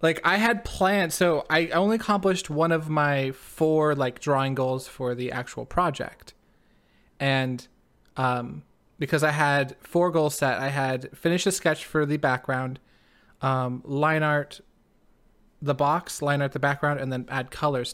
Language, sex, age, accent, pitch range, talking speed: English, male, 20-39, American, 130-155 Hz, 160 wpm